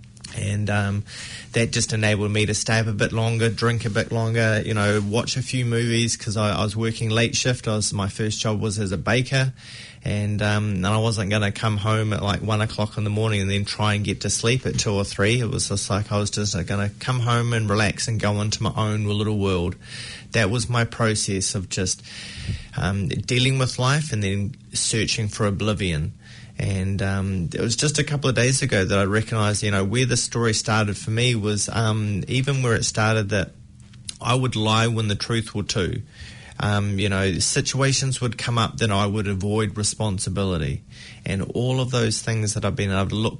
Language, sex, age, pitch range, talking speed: English, male, 20-39, 100-115 Hz, 215 wpm